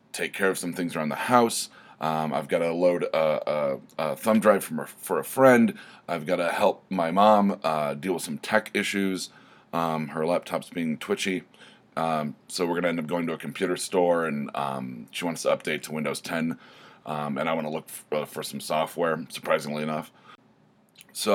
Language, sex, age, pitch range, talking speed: English, male, 30-49, 75-100 Hz, 195 wpm